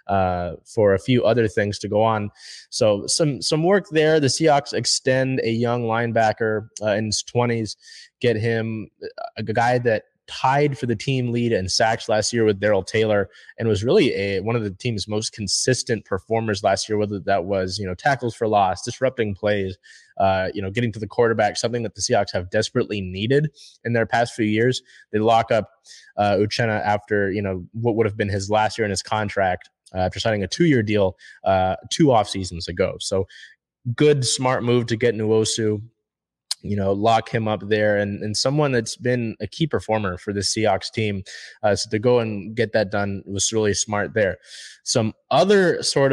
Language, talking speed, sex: English, 205 wpm, male